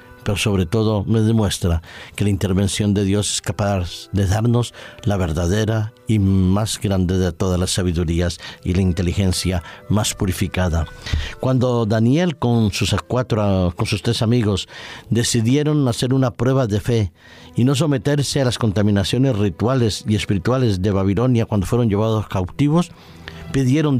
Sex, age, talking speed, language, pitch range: male, 50-69, 150 wpm, Spanish, 95-120 Hz